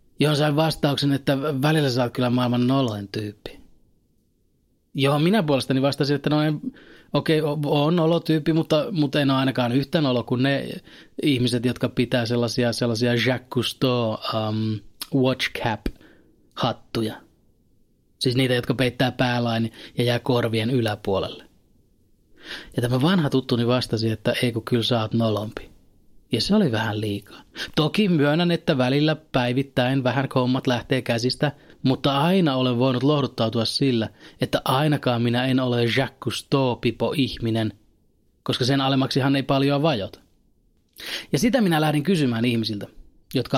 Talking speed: 140 wpm